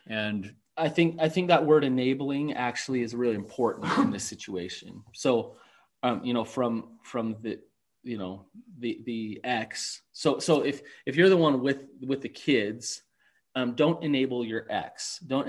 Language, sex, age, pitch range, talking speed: English, male, 30-49, 110-140 Hz, 170 wpm